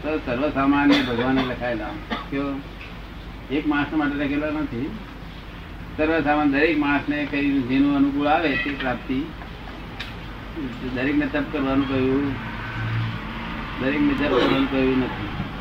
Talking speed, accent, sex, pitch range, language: 60 wpm, native, male, 120-145 Hz, Gujarati